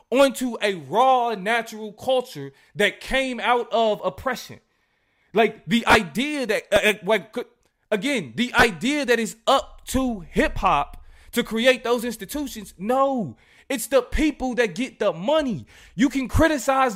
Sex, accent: male, American